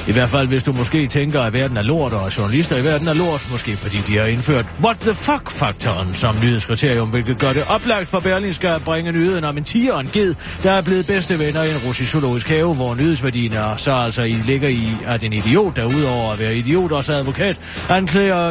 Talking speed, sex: 225 wpm, male